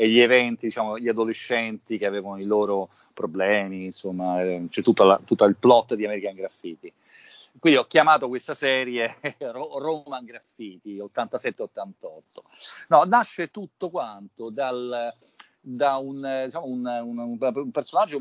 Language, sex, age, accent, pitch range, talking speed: Italian, male, 40-59, native, 105-140 Hz, 140 wpm